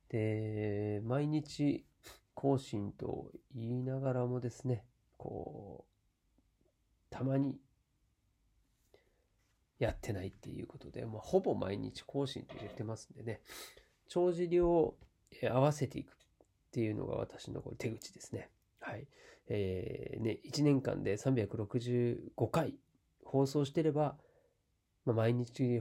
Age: 40-59